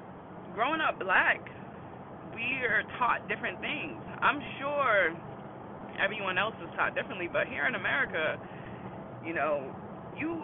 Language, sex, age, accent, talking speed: English, female, 20-39, American, 125 wpm